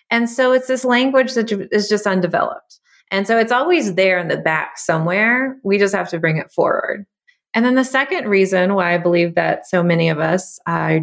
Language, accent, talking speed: English, American, 210 wpm